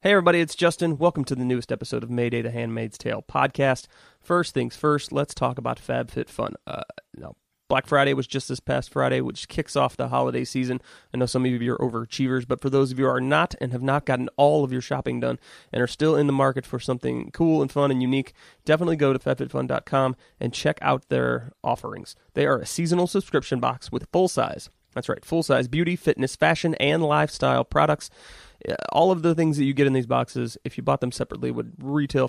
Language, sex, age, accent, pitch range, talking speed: English, male, 30-49, American, 120-150 Hz, 215 wpm